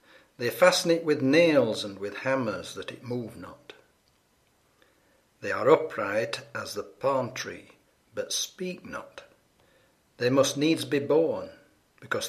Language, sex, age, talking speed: English, male, 60-79, 135 wpm